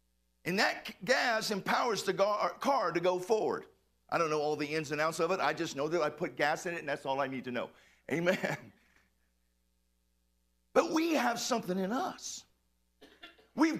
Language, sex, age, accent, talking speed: English, male, 50-69, American, 185 wpm